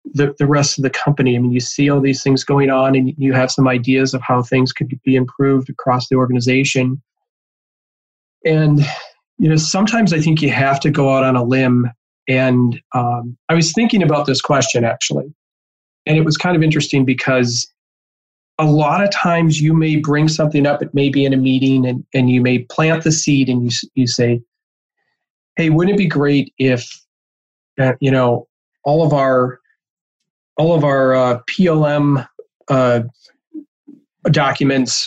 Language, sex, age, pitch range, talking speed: English, male, 40-59, 125-155 Hz, 180 wpm